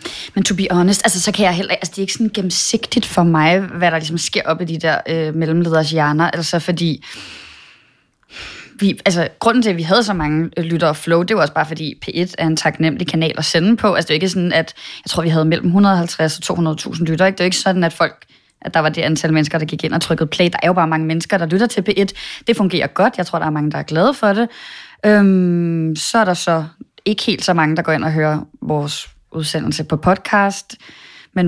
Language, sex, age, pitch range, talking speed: English, female, 20-39, 165-205 Hz, 255 wpm